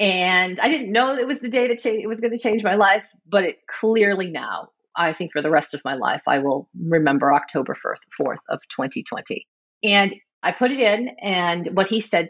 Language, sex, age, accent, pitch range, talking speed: English, female, 40-59, American, 165-220 Hz, 225 wpm